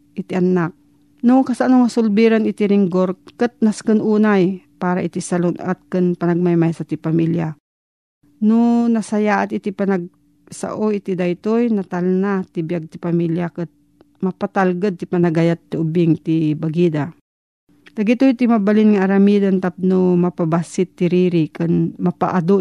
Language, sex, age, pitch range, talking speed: Filipino, female, 40-59, 170-205 Hz, 135 wpm